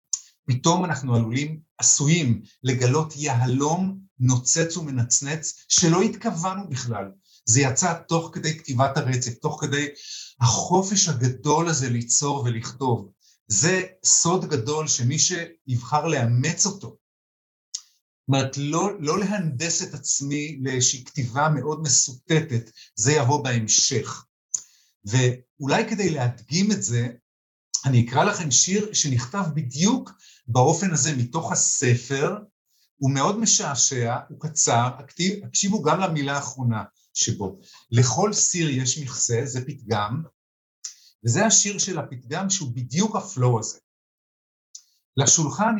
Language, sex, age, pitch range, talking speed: Hebrew, male, 50-69, 120-165 Hz, 110 wpm